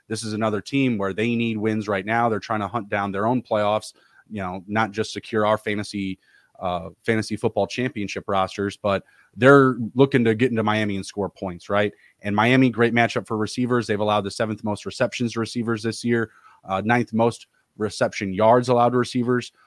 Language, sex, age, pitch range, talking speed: English, male, 30-49, 105-120 Hz, 200 wpm